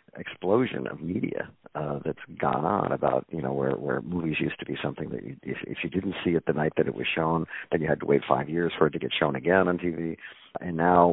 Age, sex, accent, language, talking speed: 50-69, male, American, English, 260 wpm